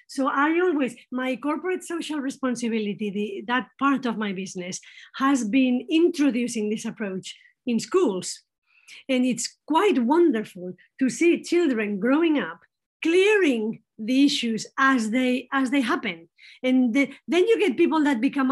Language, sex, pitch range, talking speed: English, female, 225-290 Hz, 135 wpm